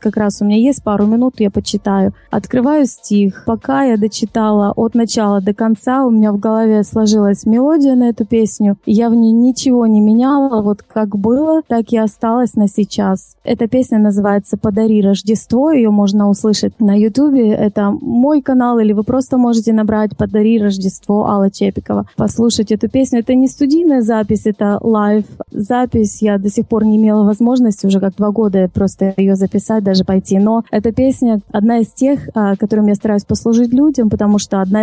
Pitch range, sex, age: 205-235 Hz, female, 20-39